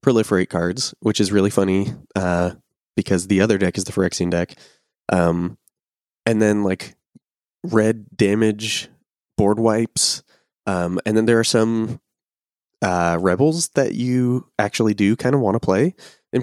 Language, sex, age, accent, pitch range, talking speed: English, male, 20-39, American, 95-115 Hz, 150 wpm